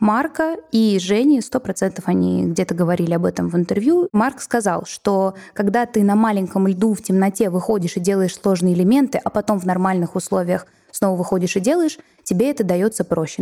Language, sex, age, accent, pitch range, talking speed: Russian, female, 20-39, native, 180-225 Hz, 175 wpm